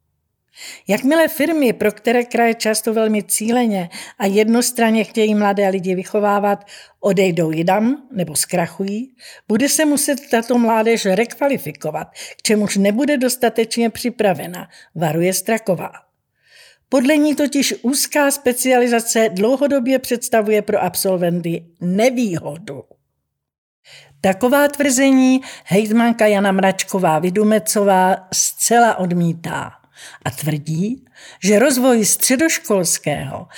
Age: 50-69